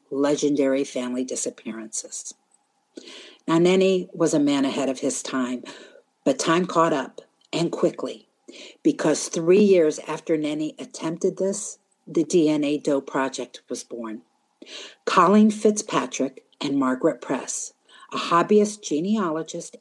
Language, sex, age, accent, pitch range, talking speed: English, female, 50-69, American, 145-210 Hz, 120 wpm